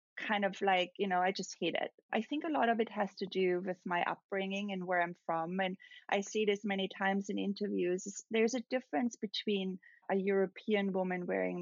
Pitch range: 185-215 Hz